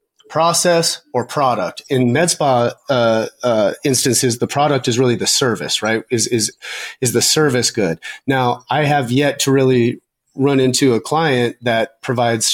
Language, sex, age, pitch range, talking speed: English, male, 30-49, 120-150 Hz, 165 wpm